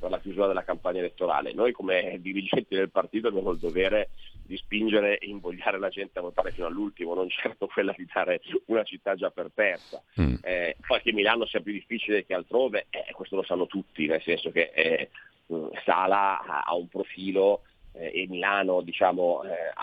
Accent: native